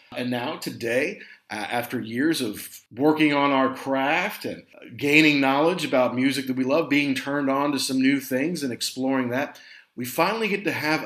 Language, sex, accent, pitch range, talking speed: English, male, American, 125-160 Hz, 185 wpm